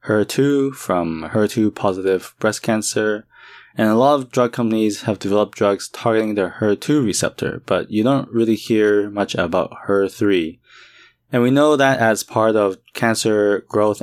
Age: 20-39